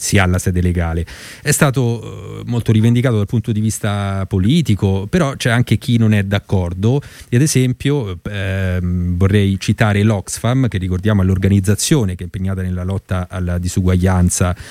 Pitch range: 95-125 Hz